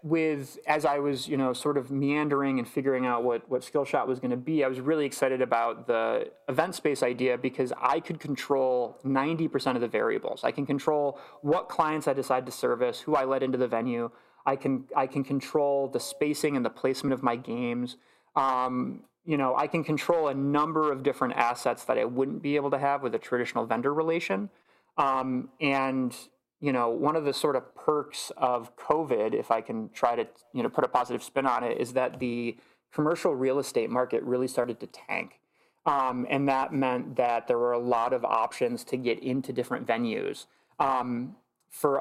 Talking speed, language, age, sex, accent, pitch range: 205 wpm, English, 30-49, male, American, 125-145 Hz